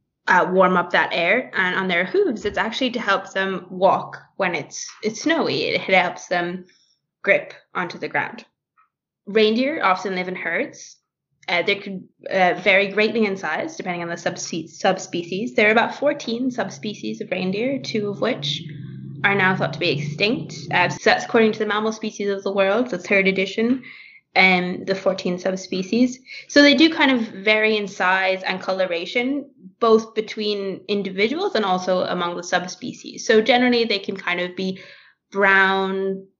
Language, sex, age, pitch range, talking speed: English, female, 20-39, 185-225 Hz, 170 wpm